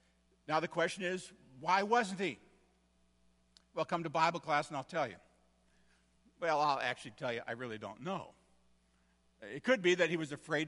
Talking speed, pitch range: 180 wpm, 125-190 Hz